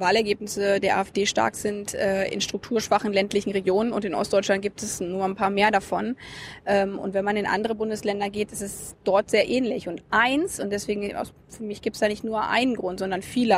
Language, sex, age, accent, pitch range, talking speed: German, female, 20-39, German, 200-225 Hz, 210 wpm